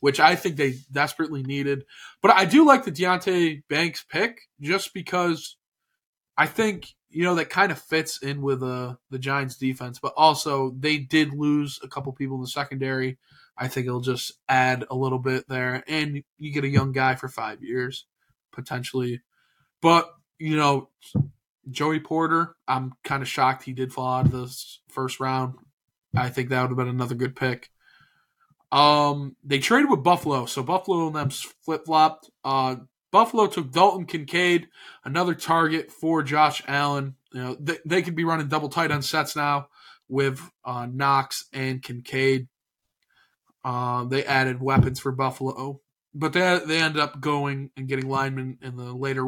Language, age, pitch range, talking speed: English, 20-39, 130-160 Hz, 175 wpm